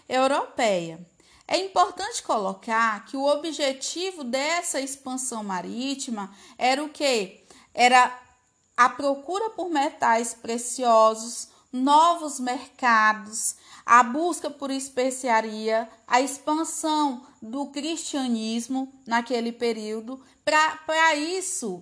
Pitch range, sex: 235-310 Hz, female